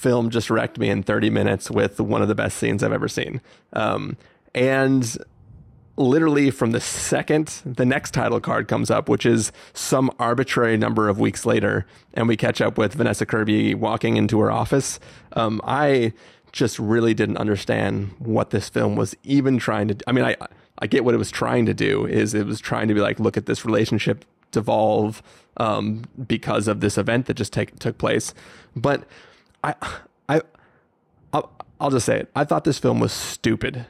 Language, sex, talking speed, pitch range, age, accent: English, male, 190 wpm, 110-135 Hz, 30-49, American